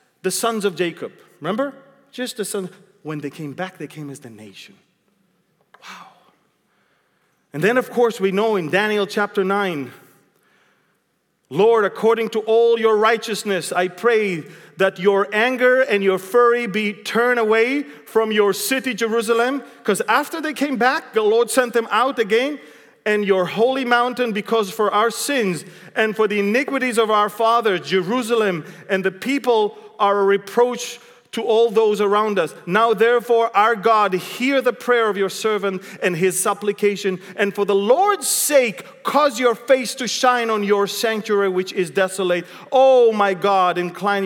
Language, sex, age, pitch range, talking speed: English, male, 40-59, 190-235 Hz, 165 wpm